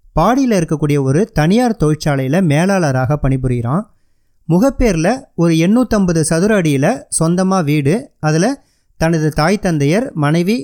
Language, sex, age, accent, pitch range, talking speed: Tamil, male, 30-49, native, 145-205 Hz, 105 wpm